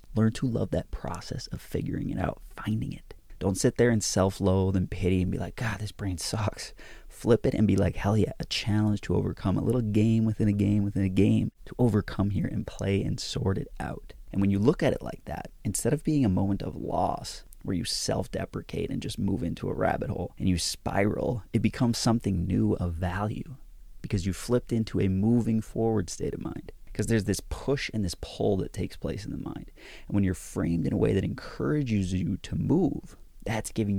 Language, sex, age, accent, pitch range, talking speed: English, male, 30-49, American, 90-110 Hz, 220 wpm